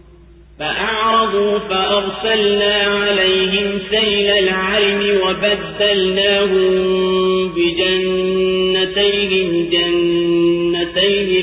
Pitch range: 185-205 Hz